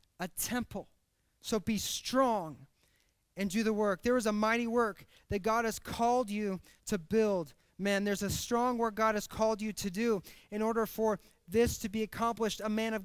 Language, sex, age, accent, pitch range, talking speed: English, male, 30-49, American, 220-260 Hz, 195 wpm